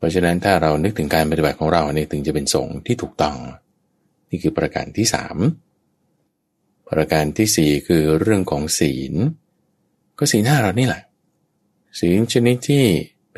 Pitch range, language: 80-110 Hz, Thai